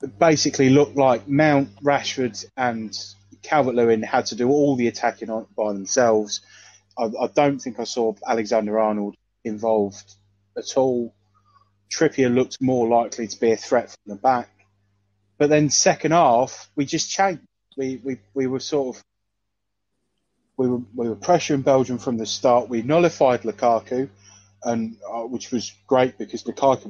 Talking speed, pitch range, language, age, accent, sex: 160 wpm, 105-130 Hz, English, 20-39, British, male